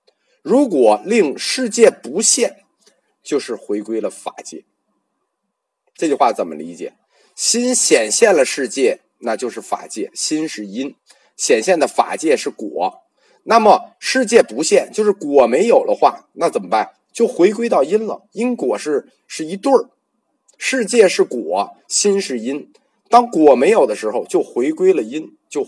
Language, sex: Chinese, male